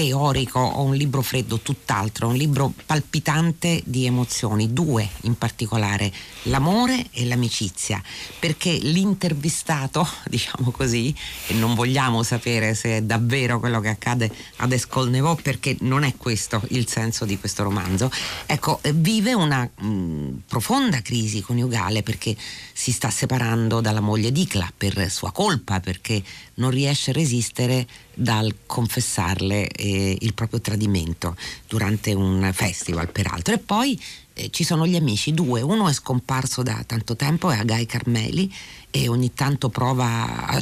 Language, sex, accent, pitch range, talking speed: Italian, female, native, 110-145 Hz, 140 wpm